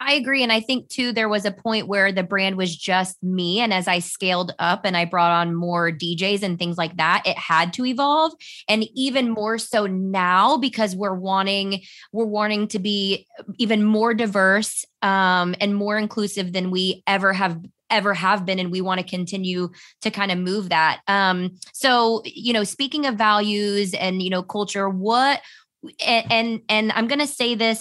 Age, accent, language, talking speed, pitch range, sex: 20-39, American, English, 195 wpm, 185-225 Hz, female